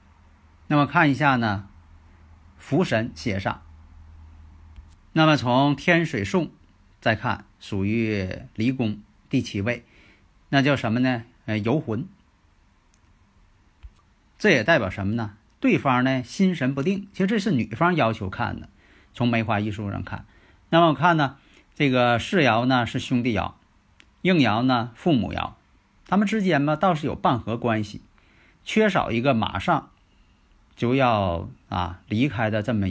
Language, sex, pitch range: Chinese, male, 95-135 Hz